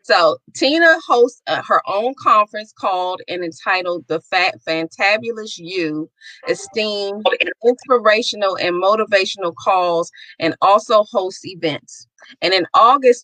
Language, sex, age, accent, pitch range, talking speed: English, female, 30-49, American, 180-225 Hz, 120 wpm